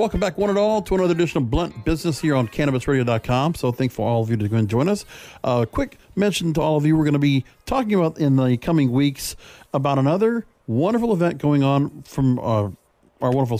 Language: English